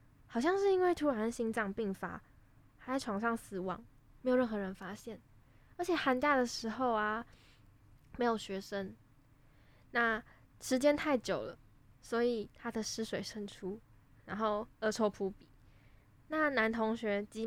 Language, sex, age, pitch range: Chinese, female, 10-29, 195-230 Hz